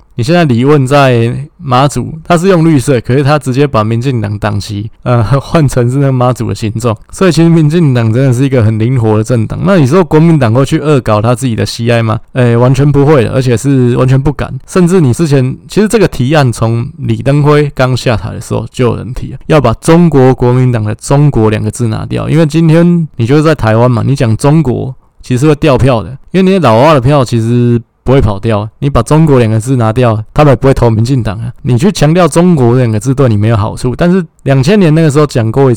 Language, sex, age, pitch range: Chinese, male, 20-39, 115-145 Hz